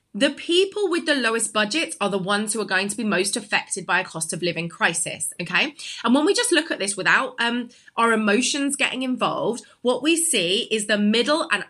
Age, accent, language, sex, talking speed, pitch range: 20-39, British, English, female, 220 wpm, 210-305 Hz